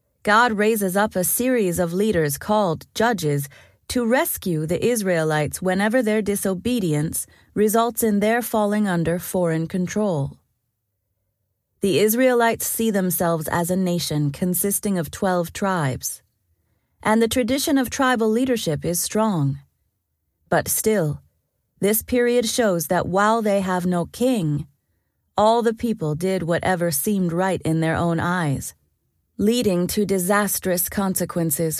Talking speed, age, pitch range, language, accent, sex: 130 wpm, 30-49, 155-215 Hz, English, American, female